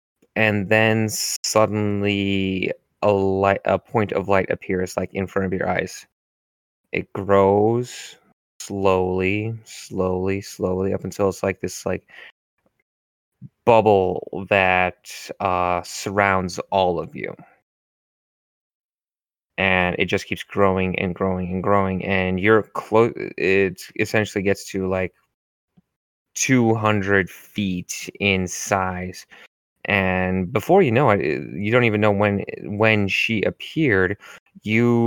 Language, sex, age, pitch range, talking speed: English, male, 20-39, 95-105 Hz, 120 wpm